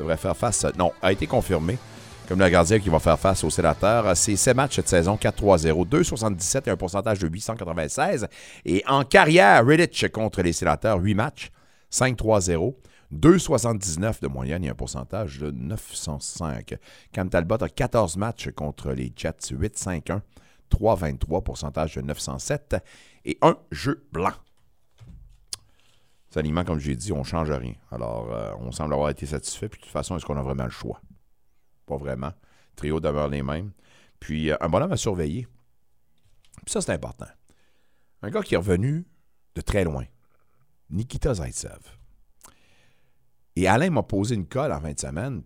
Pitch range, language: 75-110 Hz, French